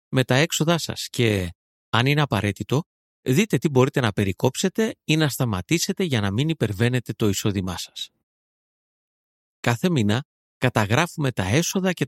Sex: male